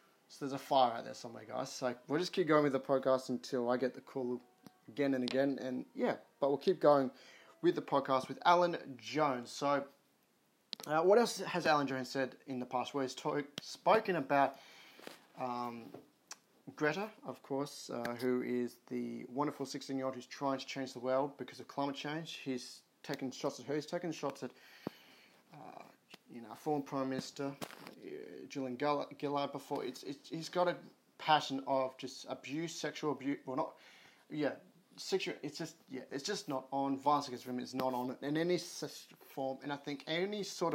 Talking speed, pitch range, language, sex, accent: 190 wpm, 130-150 Hz, English, male, Australian